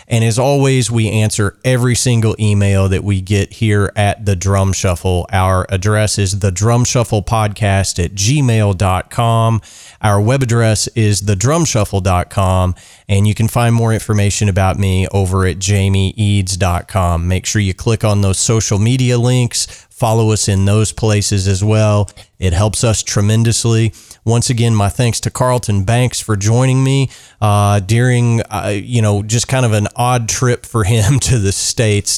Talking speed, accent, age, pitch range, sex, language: 155 wpm, American, 30-49, 95-115 Hz, male, English